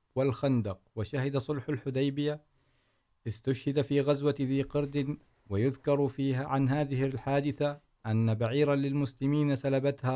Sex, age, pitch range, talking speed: male, 50-69, 125-145 Hz, 105 wpm